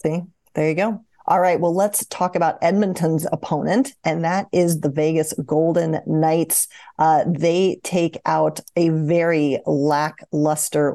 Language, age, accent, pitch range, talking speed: English, 40-59, American, 155-185 Hz, 140 wpm